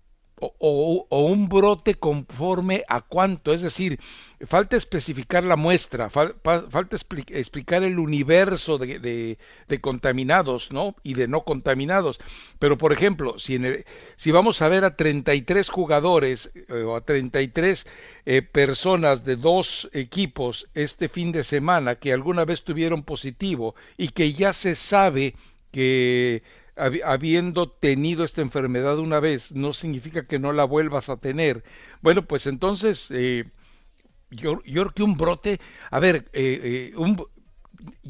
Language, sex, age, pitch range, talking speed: English, male, 60-79, 135-185 Hz, 135 wpm